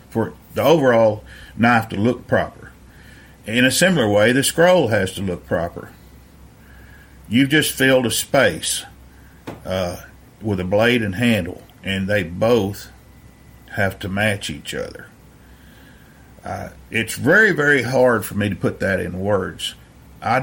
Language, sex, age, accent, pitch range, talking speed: English, male, 50-69, American, 90-120 Hz, 145 wpm